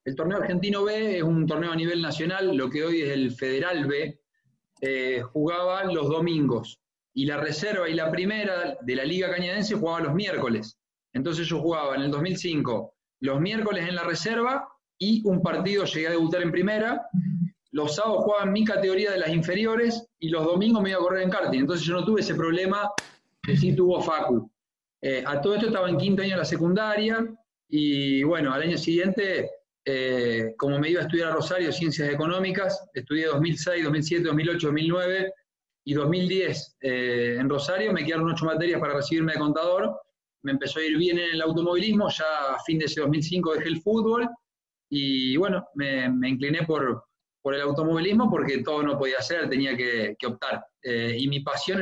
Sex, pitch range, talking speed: male, 145-190 Hz, 190 wpm